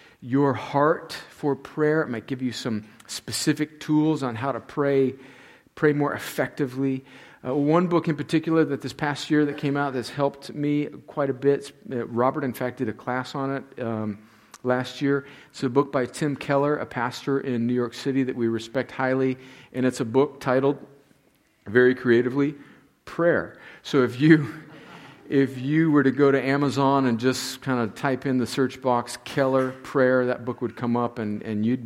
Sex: male